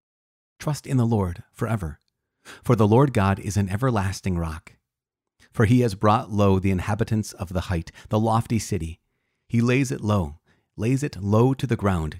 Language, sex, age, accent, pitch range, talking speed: English, male, 30-49, American, 95-120 Hz, 175 wpm